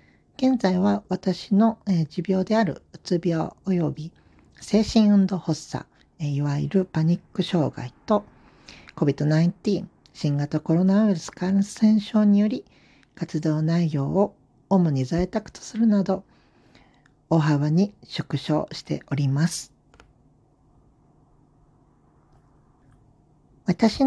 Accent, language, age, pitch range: native, Japanese, 50-69, 145-200 Hz